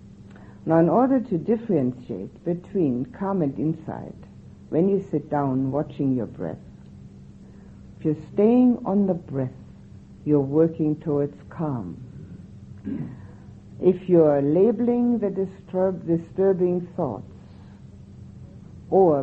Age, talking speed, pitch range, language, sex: 60-79, 105 wpm, 135-180 Hz, English, female